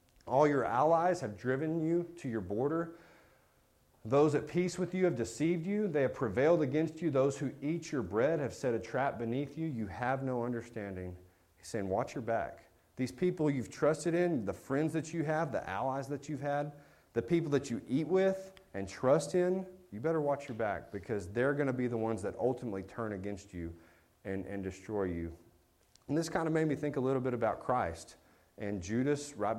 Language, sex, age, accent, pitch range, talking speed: English, male, 40-59, American, 95-145 Hz, 205 wpm